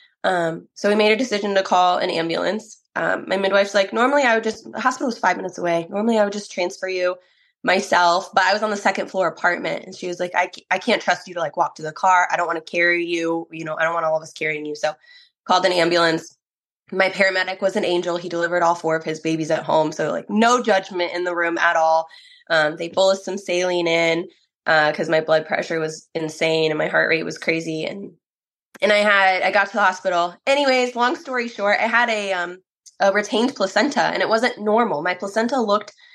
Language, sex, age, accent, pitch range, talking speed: English, female, 20-39, American, 165-215 Hz, 240 wpm